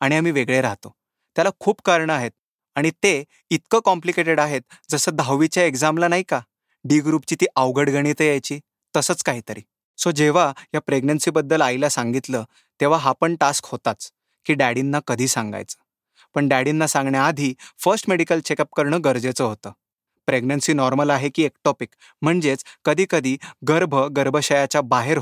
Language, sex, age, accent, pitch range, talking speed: Marathi, male, 20-39, native, 135-165 Hz, 130 wpm